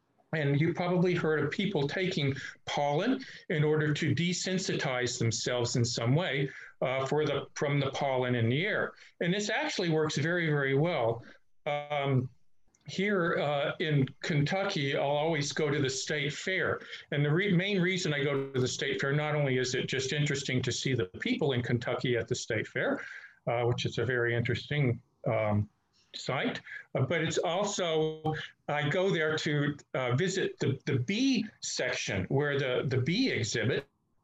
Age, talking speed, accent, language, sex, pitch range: 50-69, 175 wpm, American, English, male, 125-155 Hz